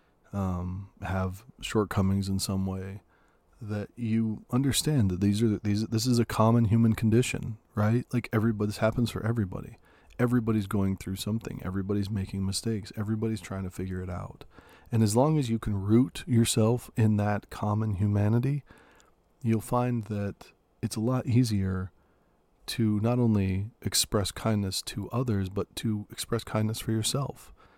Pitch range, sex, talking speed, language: 100-120 Hz, male, 155 wpm, English